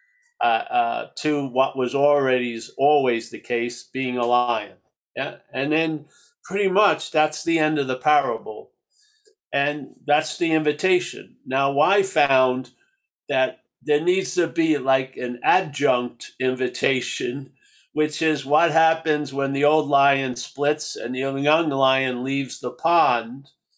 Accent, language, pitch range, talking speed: American, English, 135-165 Hz, 140 wpm